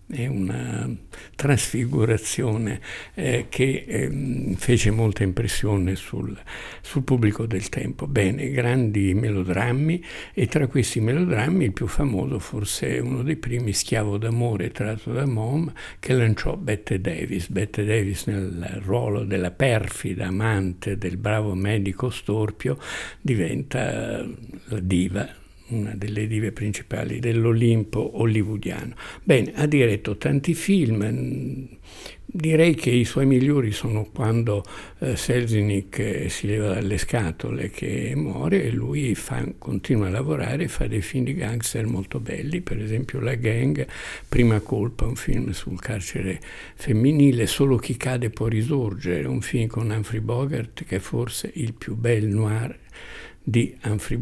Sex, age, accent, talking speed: male, 60-79, native, 130 wpm